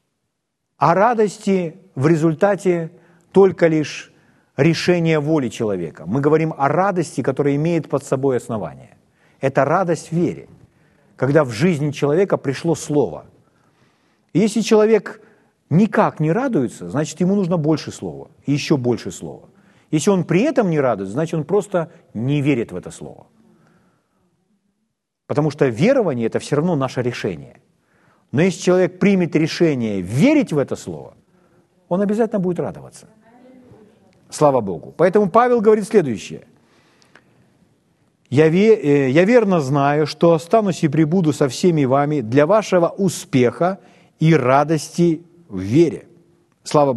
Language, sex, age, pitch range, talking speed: Ukrainian, male, 40-59, 145-195 Hz, 130 wpm